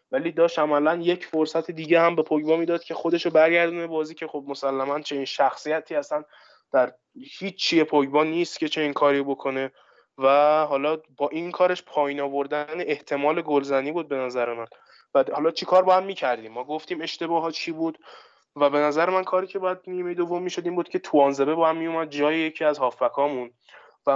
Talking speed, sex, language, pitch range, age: 195 wpm, male, Persian, 140-170 Hz, 20-39